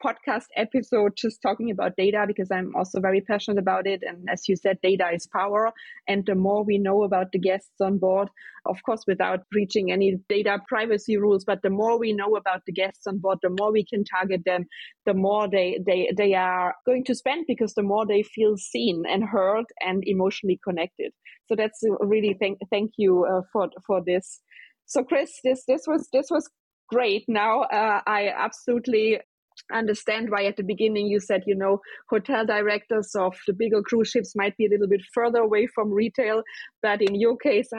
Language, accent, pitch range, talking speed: English, German, 195-225 Hz, 200 wpm